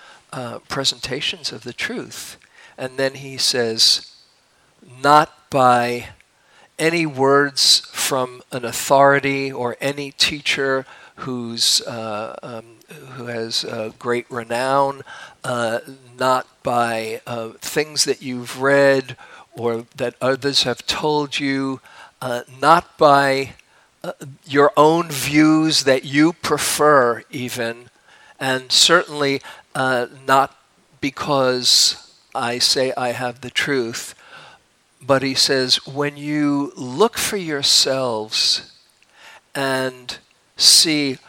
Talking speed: 105 wpm